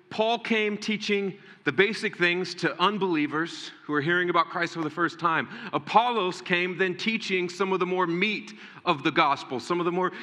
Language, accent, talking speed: English, American, 195 wpm